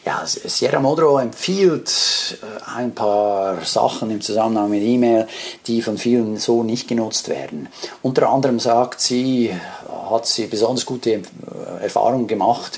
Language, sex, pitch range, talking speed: German, male, 105-125 Hz, 125 wpm